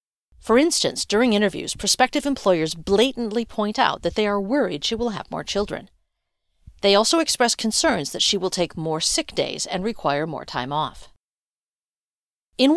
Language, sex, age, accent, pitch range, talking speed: English, female, 40-59, American, 180-260 Hz, 165 wpm